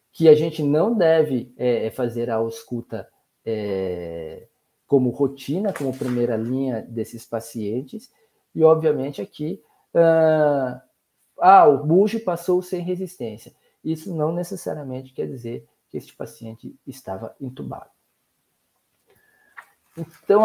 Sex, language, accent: male, Portuguese, Brazilian